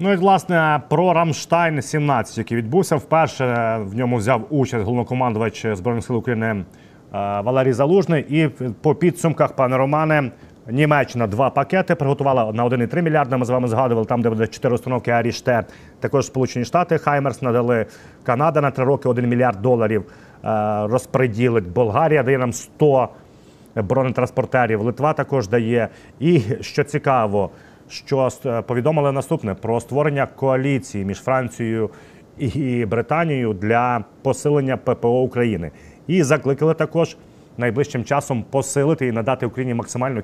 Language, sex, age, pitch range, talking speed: Ukrainian, male, 30-49, 115-140 Hz, 130 wpm